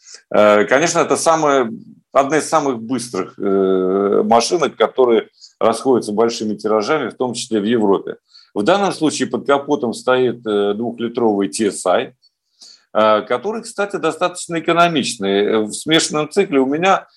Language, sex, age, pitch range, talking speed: Russian, male, 50-69, 115-160 Hz, 115 wpm